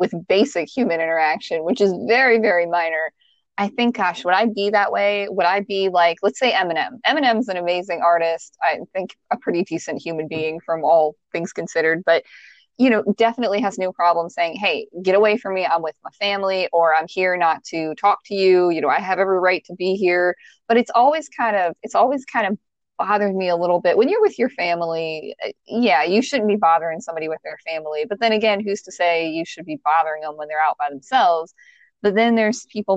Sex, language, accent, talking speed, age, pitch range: female, English, American, 220 wpm, 20-39, 165-200 Hz